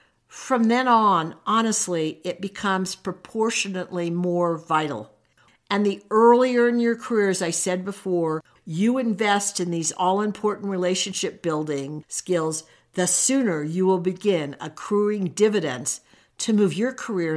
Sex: female